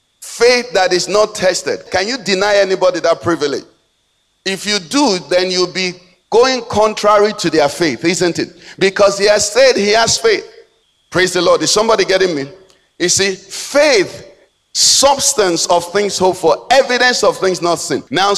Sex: male